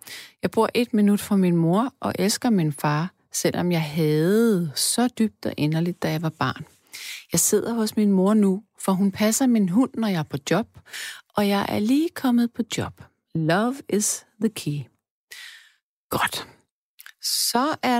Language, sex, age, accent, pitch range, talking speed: Danish, female, 40-59, native, 155-235 Hz, 175 wpm